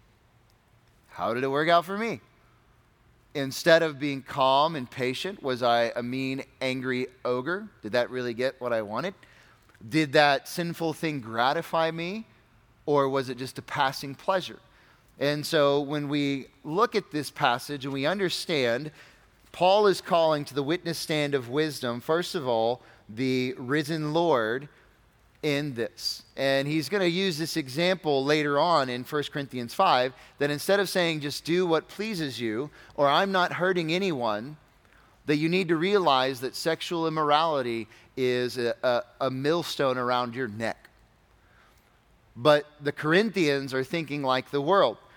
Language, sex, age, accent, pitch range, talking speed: English, male, 30-49, American, 125-165 Hz, 155 wpm